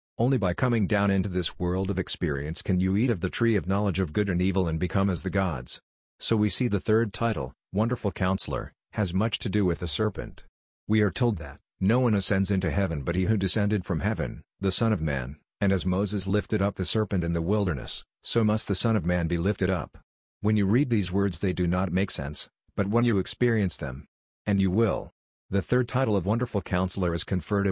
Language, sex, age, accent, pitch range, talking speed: English, male, 50-69, American, 85-105 Hz, 225 wpm